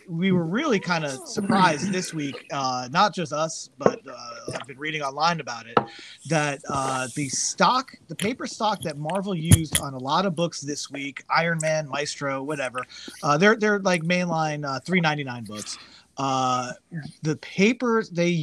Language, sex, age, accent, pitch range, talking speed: English, male, 30-49, American, 140-180 Hz, 180 wpm